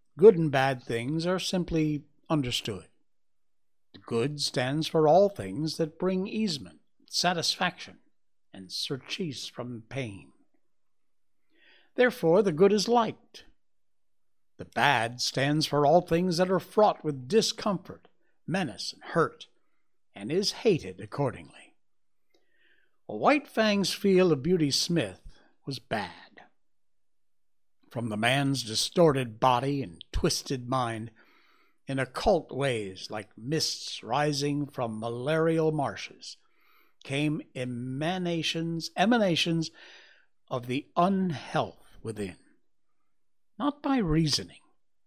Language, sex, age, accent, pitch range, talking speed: English, male, 60-79, American, 125-185 Hz, 105 wpm